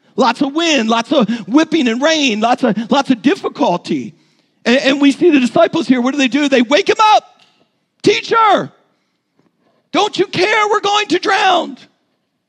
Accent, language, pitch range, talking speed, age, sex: American, English, 210-285 Hz, 175 wpm, 50-69, male